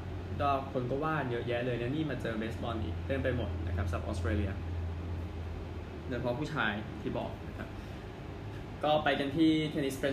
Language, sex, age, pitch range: Thai, male, 20-39, 100-140 Hz